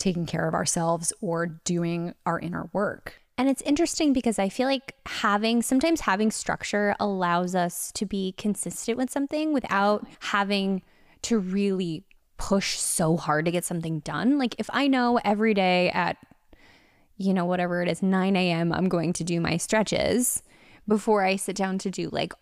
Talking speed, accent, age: 175 wpm, American, 10-29